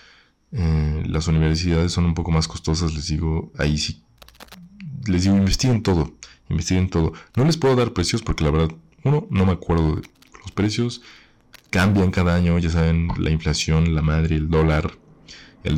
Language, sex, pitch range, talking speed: Spanish, male, 85-115 Hz, 170 wpm